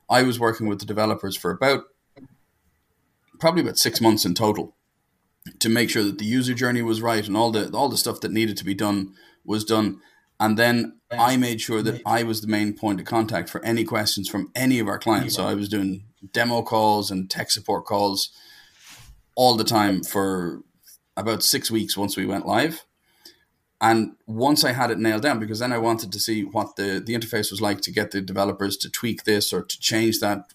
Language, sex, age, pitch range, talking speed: German, male, 30-49, 100-115 Hz, 210 wpm